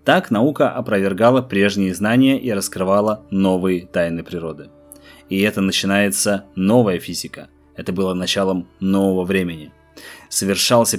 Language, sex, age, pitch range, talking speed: Russian, male, 20-39, 95-120 Hz, 115 wpm